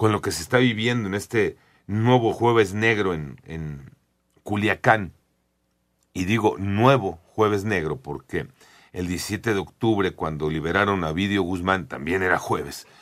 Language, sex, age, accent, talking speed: Spanish, male, 40-59, Mexican, 145 wpm